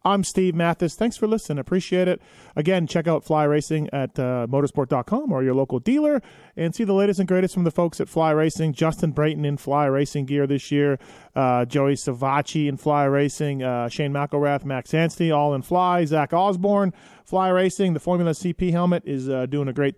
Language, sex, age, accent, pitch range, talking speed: English, male, 30-49, American, 135-175 Hz, 200 wpm